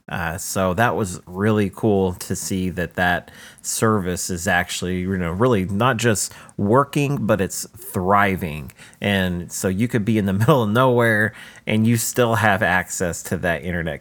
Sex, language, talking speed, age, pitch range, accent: male, English, 170 wpm, 30-49, 90-115 Hz, American